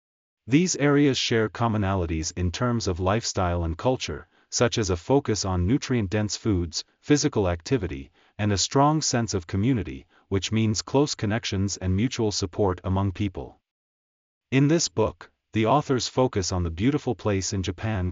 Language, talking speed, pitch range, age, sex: German, 150 wpm, 90-125 Hz, 40-59, male